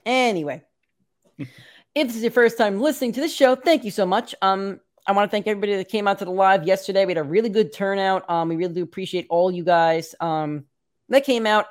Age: 30-49